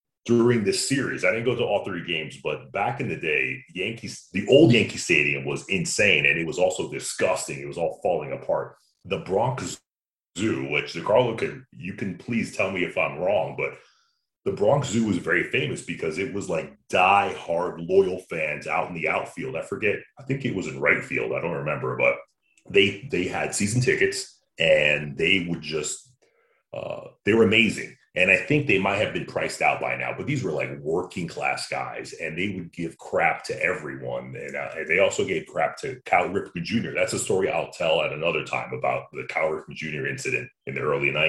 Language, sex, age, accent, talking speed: English, male, 30-49, American, 210 wpm